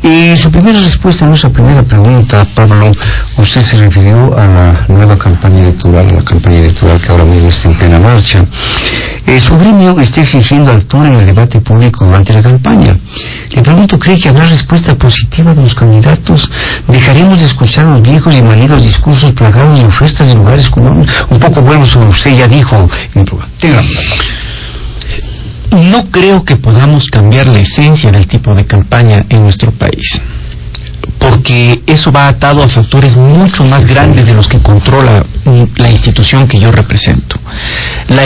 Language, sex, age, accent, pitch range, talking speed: Spanish, male, 50-69, Mexican, 105-140 Hz, 170 wpm